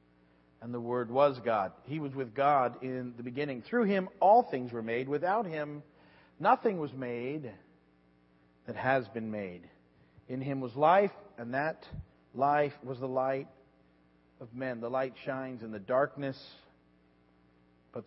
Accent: American